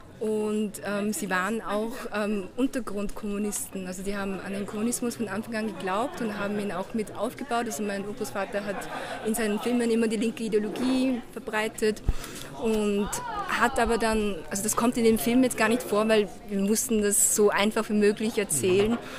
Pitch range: 185-215 Hz